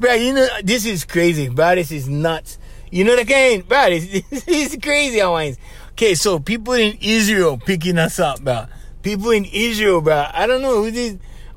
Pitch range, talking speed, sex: 130-210 Hz, 200 wpm, male